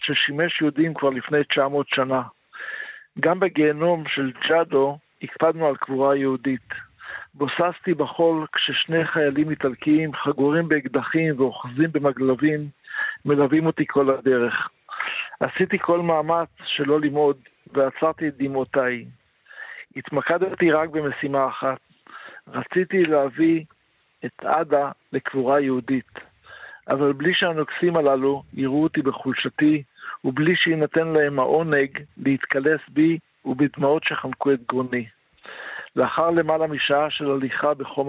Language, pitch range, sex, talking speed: Hebrew, 135-160 Hz, male, 105 wpm